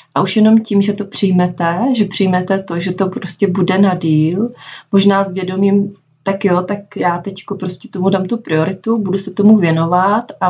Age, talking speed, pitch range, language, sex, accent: 30-49, 190 wpm, 160-195 Hz, Czech, female, native